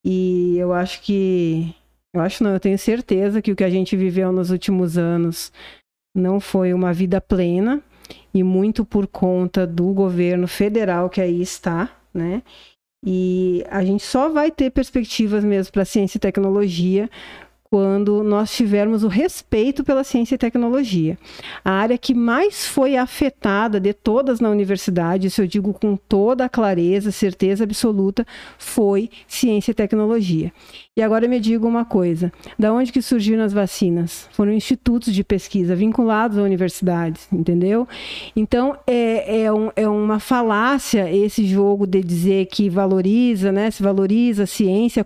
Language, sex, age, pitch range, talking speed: Portuguese, female, 50-69, 190-235 Hz, 155 wpm